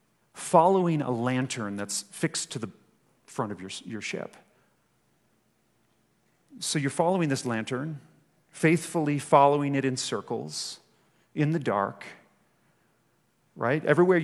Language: English